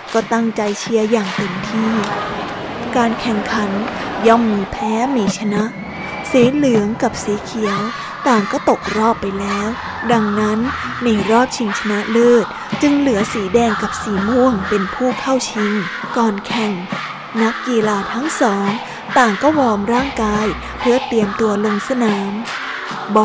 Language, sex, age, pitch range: Thai, female, 20-39, 210-240 Hz